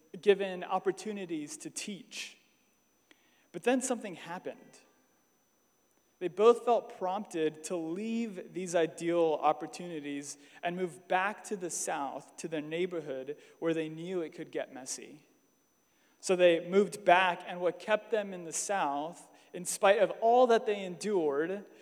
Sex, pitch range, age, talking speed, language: male, 175-220 Hz, 30-49, 140 wpm, English